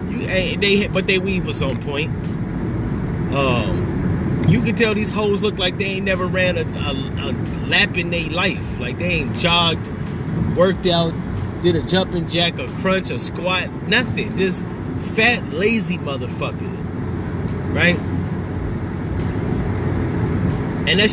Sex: male